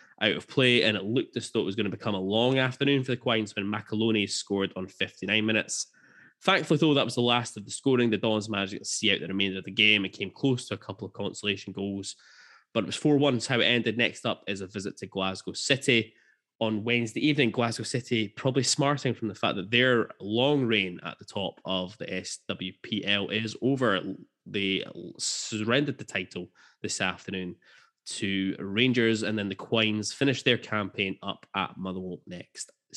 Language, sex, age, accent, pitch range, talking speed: English, male, 10-29, British, 100-125 Hz, 200 wpm